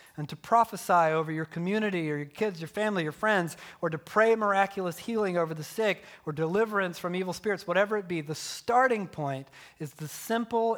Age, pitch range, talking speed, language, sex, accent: 40-59, 155-200 Hz, 195 wpm, English, male, American